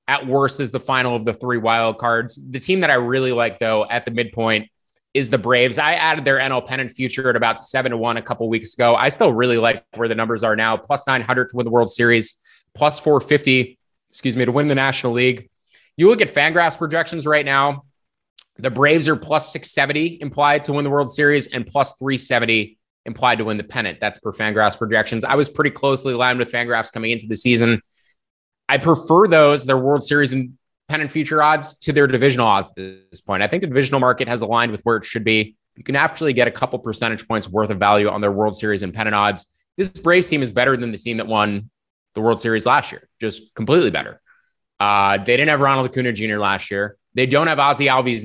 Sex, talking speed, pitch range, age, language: male, 225 wpm, 115-140 Hz, 20-39, English